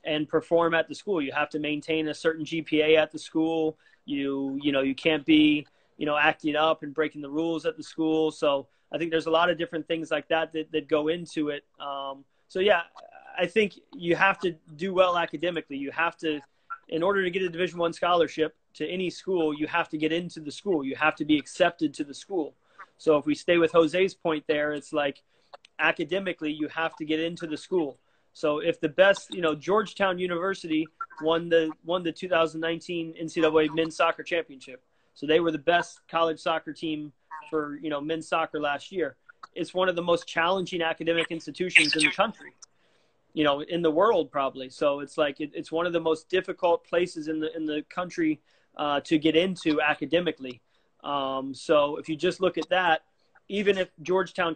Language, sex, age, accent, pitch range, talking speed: English, male, 30-49, American, 150-175 Hz, 205 wpm